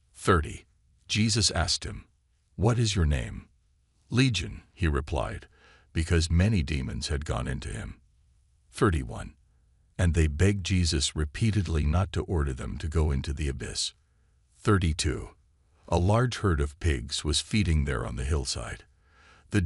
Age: 60-79